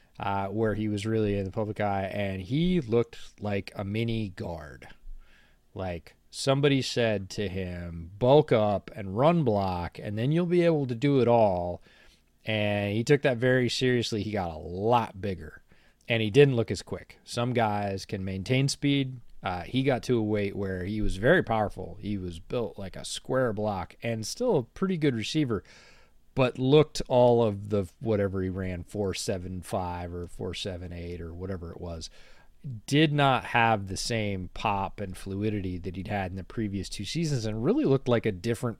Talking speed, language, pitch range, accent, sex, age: 180 wpm, English, 95-130 Hz, American, male, 30-49